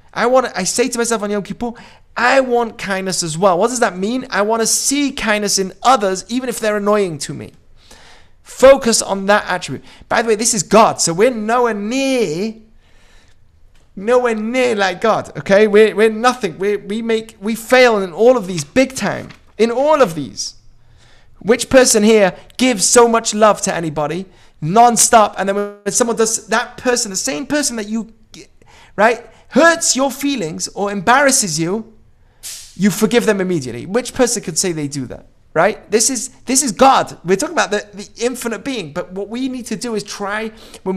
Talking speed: 190 wpm